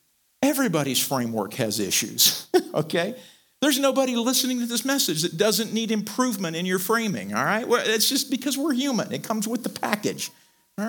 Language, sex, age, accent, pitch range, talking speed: English, male, 50-69, American, 155-235 Hz, 170 wpm